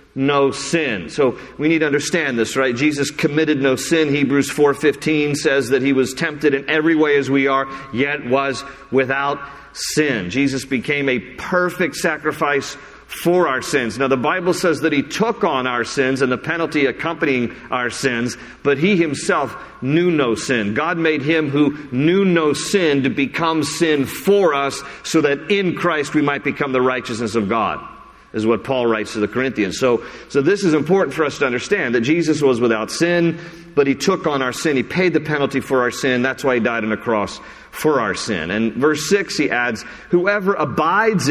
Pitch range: 120-155 Hz